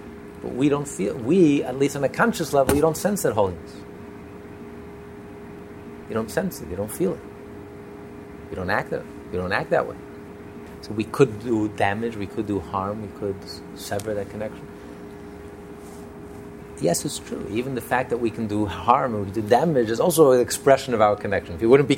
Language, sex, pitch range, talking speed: English, male, 100-120 Hz, 195 wpm